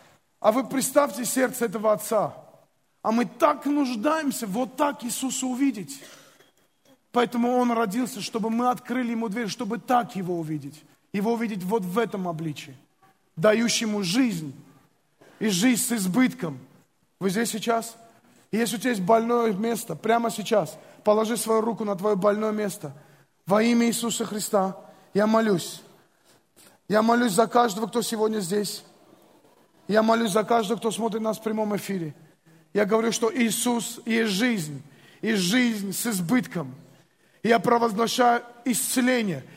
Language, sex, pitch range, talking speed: Russian, male, 195-240 Hz, 140 wpm